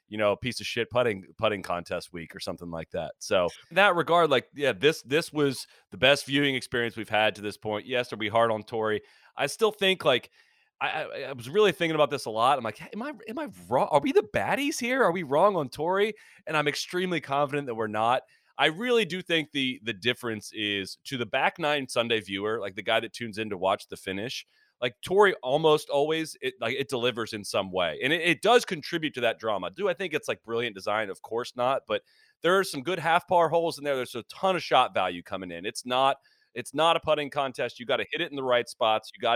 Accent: American